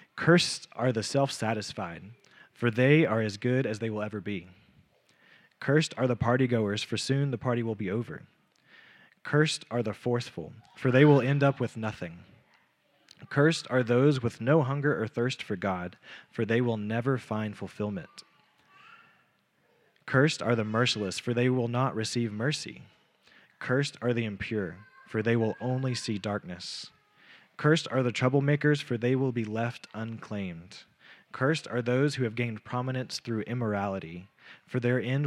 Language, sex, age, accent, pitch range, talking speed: English, male, 20-39, American, 110-130 Hz, 160 wpm